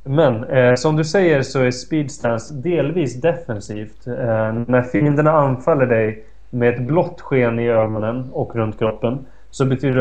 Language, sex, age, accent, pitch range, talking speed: Swedish, male, 30-49, native, 115-135 Hz, 155 wpm